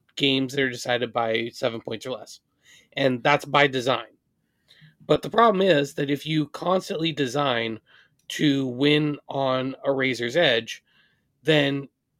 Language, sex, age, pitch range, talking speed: English, male, 30-49, 125-150 Hz, 145 wpm